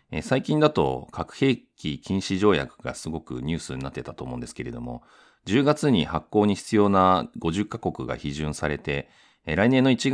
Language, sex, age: Japanese, male, 40-59